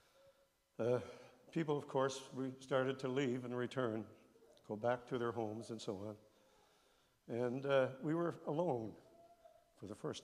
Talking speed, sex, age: 150 wpm, male, 60-79